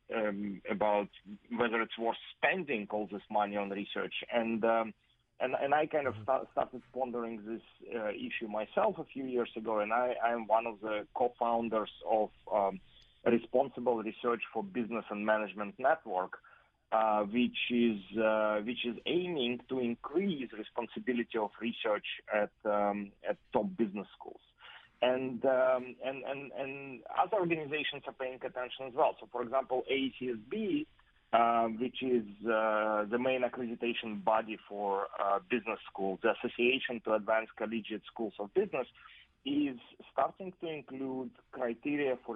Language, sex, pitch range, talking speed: English, male, 110-125 Hz, 145 wpm